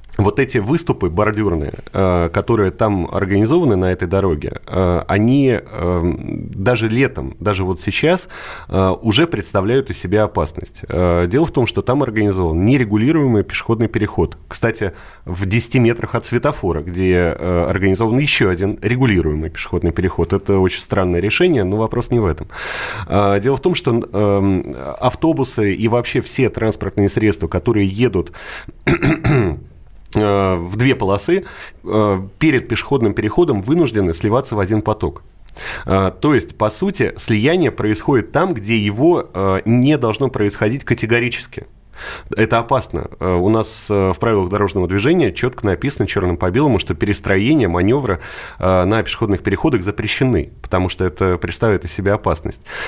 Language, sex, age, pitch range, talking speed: Russian, male, 30-49, 95-120 Hz, 130 wpm